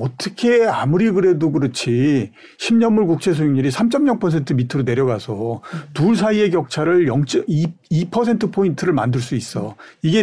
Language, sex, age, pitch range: Korean, male, 50-69, 125-175 Hz